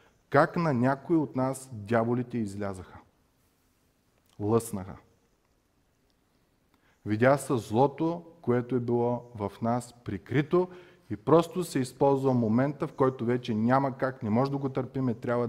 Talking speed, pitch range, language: 130 wpm, 105-135 Hz, Bulgarian